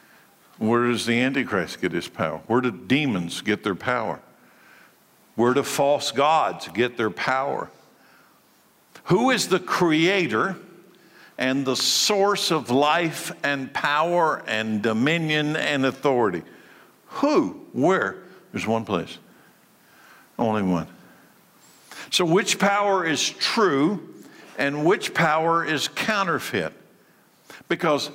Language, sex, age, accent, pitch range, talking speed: English, male, 60-79, American, 125-170 Hz, 115 wpm